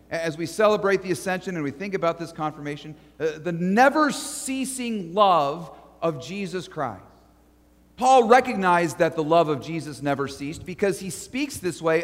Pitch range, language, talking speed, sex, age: 160-230 Hz, English, 160 wpm, male, 40-59